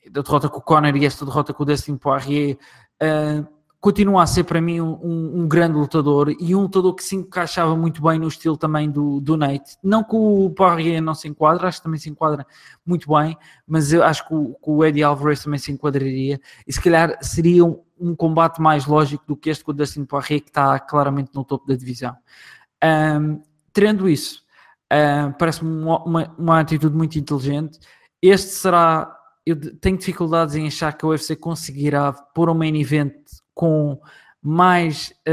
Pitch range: 145-165 Hz